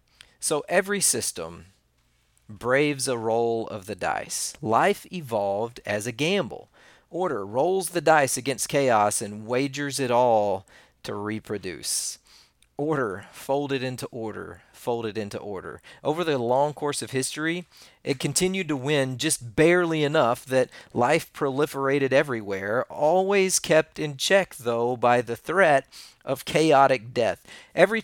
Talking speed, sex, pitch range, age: 135 wpm, male, 115-155 Hz, 40-59